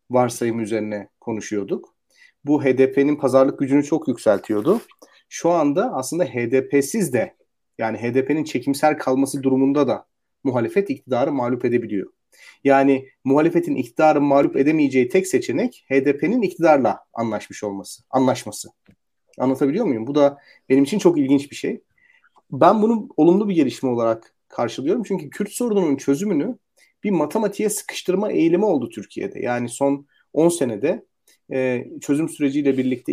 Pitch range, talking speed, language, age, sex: 125-160 Hz, 130 wpm, Turkish, 40-59, male